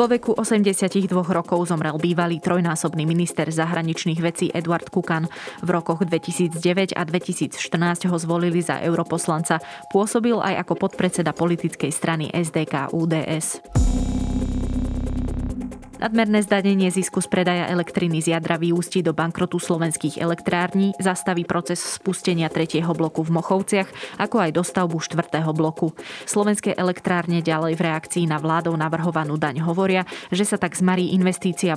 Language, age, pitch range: Slovak, 20-39, 160-185 Hz